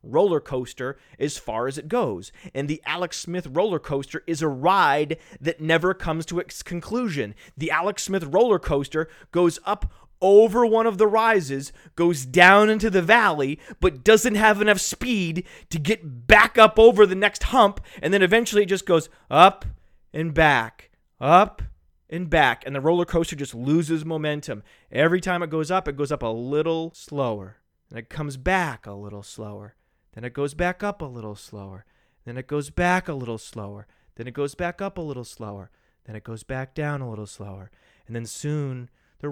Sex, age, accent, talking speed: male, 30-49, American, 190 wpm